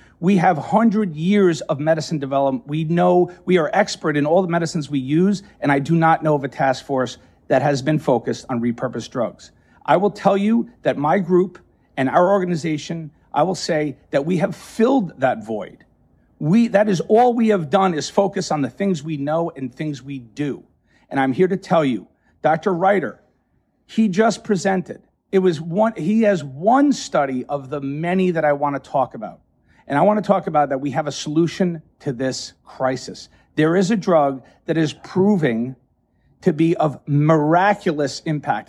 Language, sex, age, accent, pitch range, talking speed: English, male, 50-69, American, 150-200 Hz, 190 wpm